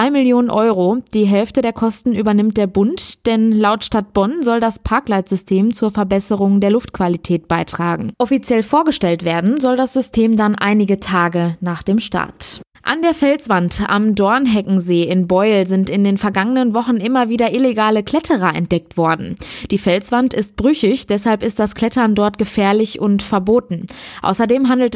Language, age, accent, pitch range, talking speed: German, 20-39, German, 195-235 Hz, 155 wpm